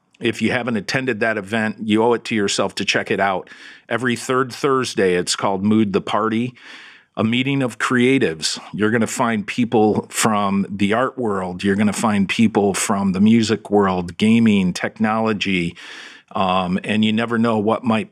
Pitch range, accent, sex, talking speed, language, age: 105-125 Hz, American, male, 180 wpm, English, 50-69